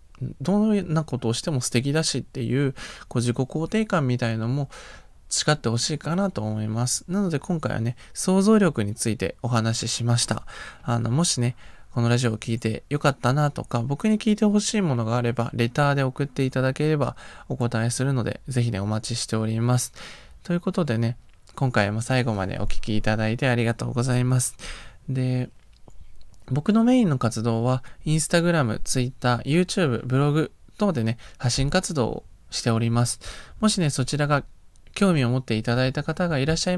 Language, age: Japanese, 20-39